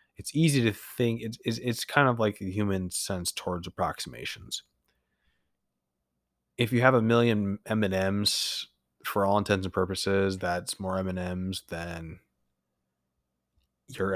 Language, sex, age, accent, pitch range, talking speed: English, male, 20-39, American, 90-105 Hz, 125 wpm